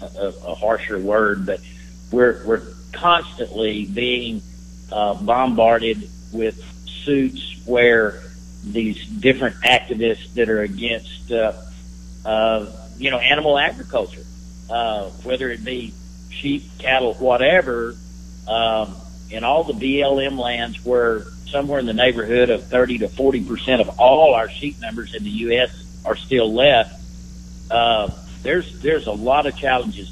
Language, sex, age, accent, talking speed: English, male, 50-69, American, 135 wpm